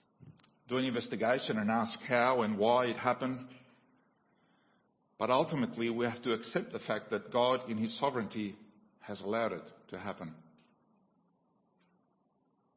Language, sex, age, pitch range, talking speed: English, male, 50-69, 110-150 Hz, 130 wpm